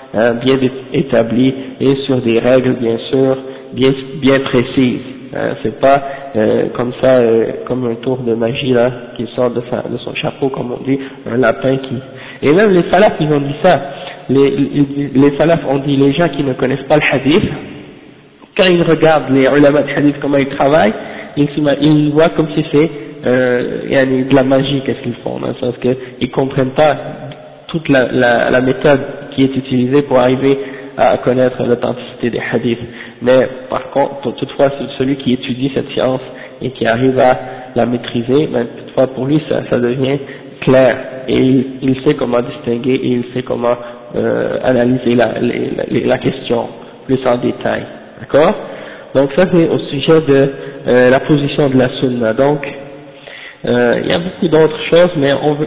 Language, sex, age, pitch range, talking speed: French, male, 50-69, 125-140 Hz, 180 wpm